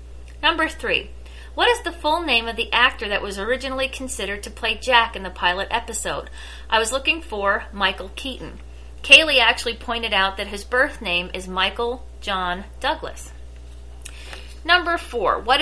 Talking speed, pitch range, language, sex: 160 wpm, 170-245 Hz, English, female